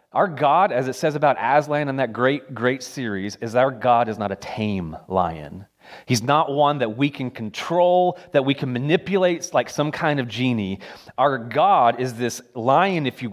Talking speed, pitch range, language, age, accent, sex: 195 wpm, 125-170 Hz, English, 30-49, American, male